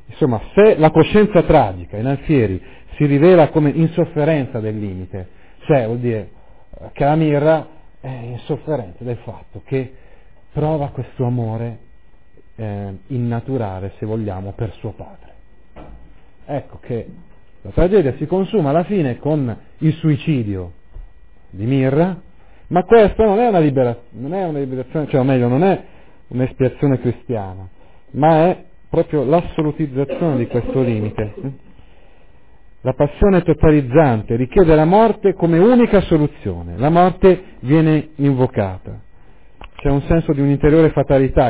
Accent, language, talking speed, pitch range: native, Italian, 125 wpm, 115-155 Hz